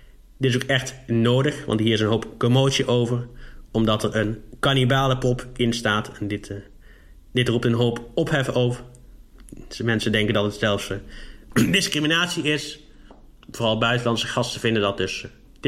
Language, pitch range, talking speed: Dutch, 110-130 Hz, 165 wpm